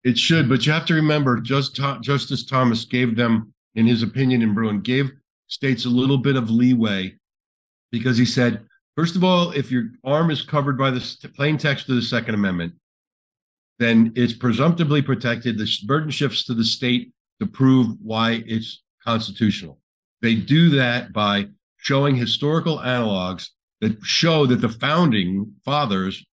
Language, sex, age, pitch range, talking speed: English, male, 50-69, 115-140 Hz, 160 wpm